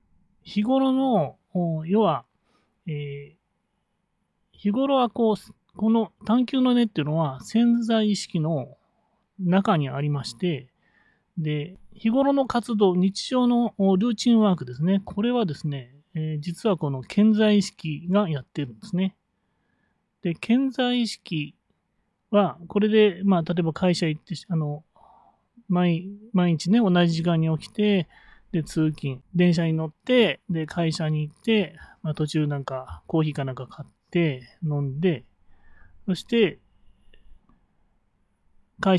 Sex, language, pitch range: male, Japanese, 150-210 Hz